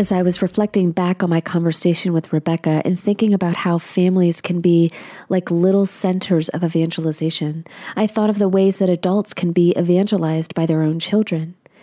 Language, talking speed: English, 185 wpm